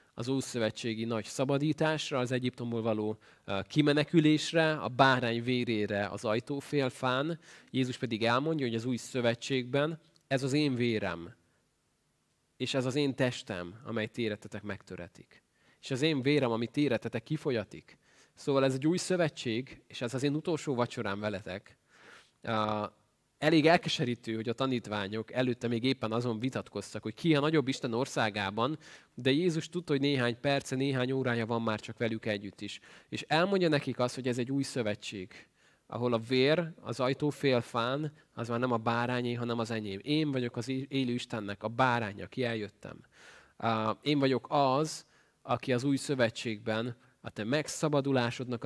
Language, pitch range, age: Hungarian, 115-140 Hz, 20-39